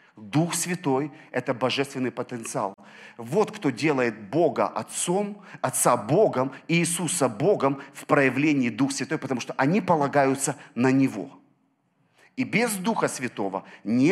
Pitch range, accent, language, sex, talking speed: 130-175 Hz, native, Russian, male, 125 wpm